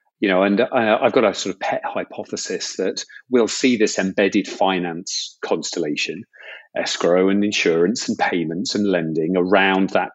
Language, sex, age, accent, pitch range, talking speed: English, male, 40-59, British, 100-125 Hz, 160 wpm